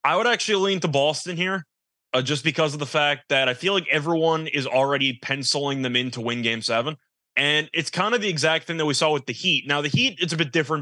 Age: 20-39